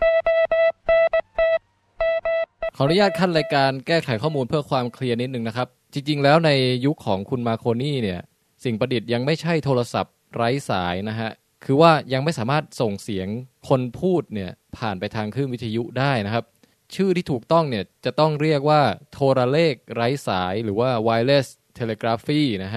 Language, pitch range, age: Thai, 115-150 Hz, 20-39